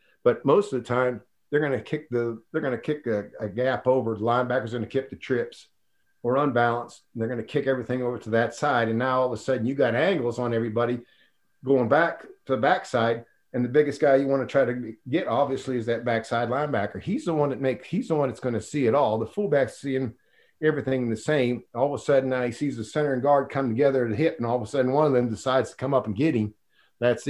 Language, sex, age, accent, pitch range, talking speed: English, male, 50-69, American, 120-145 Hz, 250 wpm